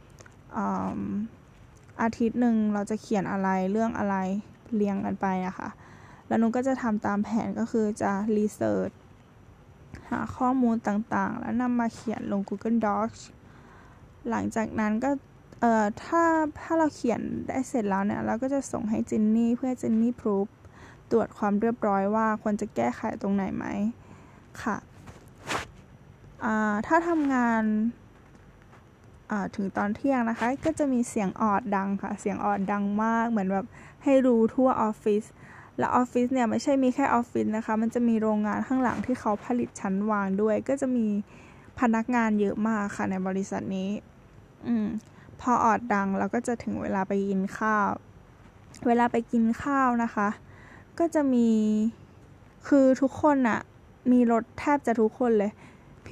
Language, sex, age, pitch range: Thai, female, 10-29, 205-245 Hz